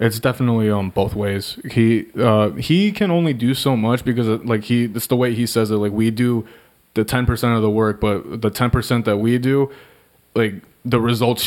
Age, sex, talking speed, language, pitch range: 20-39, male, 210 wpm, English, 105-120 Hz